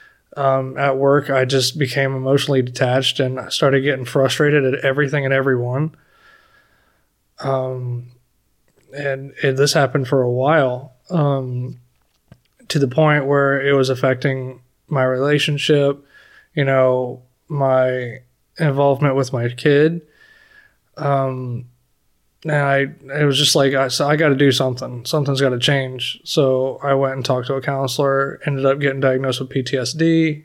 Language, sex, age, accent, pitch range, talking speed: English, male, 20-39, American, 130-150 Hz, 145 wpm